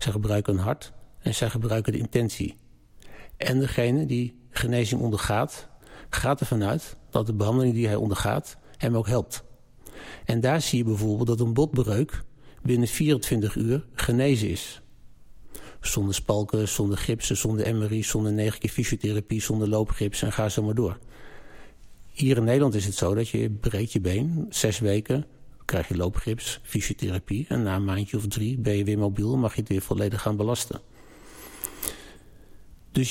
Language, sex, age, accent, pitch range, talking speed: Dutch, male, 50-69, Dutch, 105-125 Hz, 165 wpm